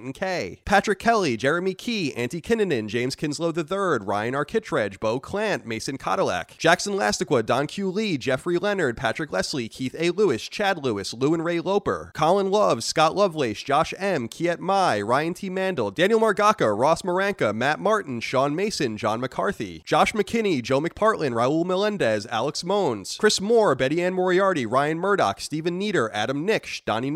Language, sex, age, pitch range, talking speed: English, male, 30-49, 130-195 Hz, 170 wpm